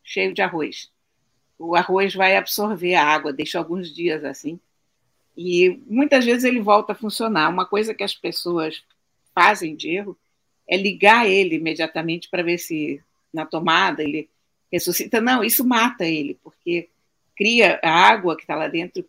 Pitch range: 160-220 Hz